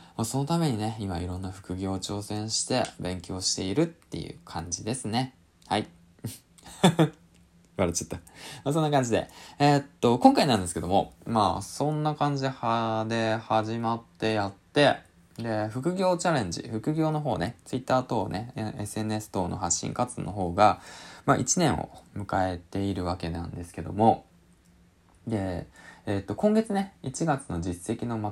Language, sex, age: Japanese, male, 20-39